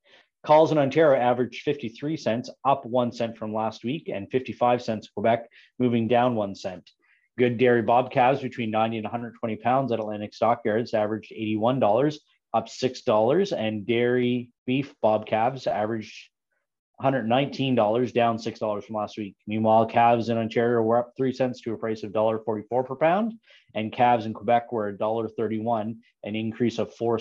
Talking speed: 165 wpm